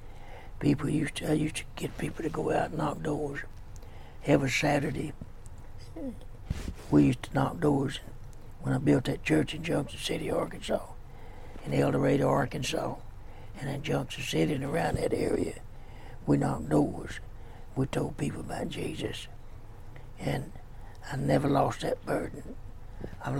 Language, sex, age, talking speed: English, male, 60-79, 145 wpm